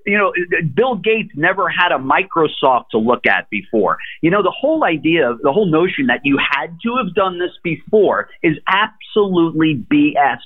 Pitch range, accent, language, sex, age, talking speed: 140-210 Hz, American, English, male, 50-69, 180 wpm